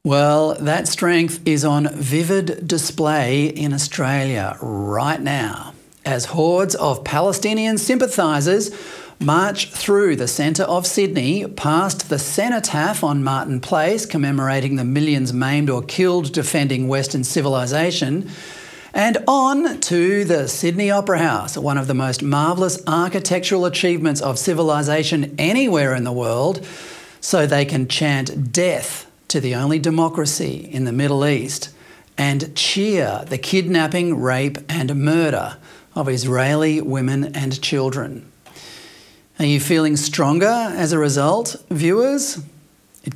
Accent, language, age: Australian, English, 40-59